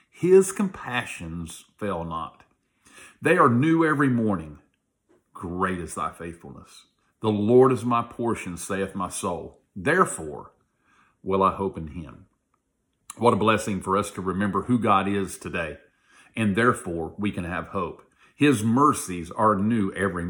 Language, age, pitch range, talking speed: English, 50-69, 90-120 Hz, 145 wpm